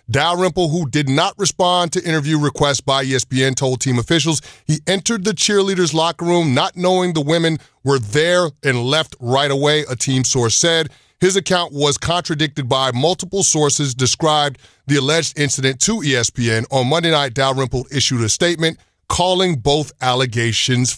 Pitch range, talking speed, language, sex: 135-165 Hz, 160 wpm, English, male